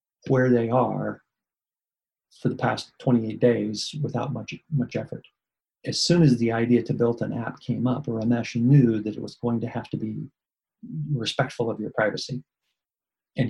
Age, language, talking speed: 40-59, English, 170 wpm